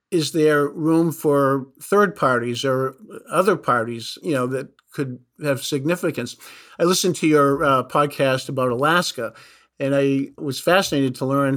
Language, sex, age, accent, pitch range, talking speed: English, male, 50-69, American, 135-170 Hz, 150 wpm